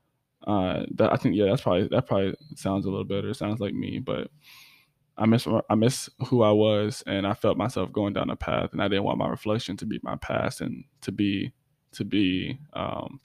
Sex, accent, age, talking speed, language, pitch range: male, American, 10-29, 215 wpm, English, 105-145 Hz